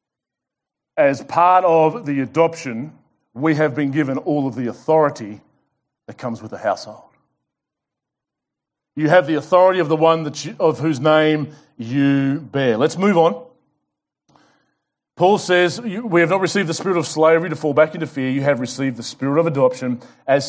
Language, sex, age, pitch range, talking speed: English, male, 40-59, 140-175 Hz, 165 wpm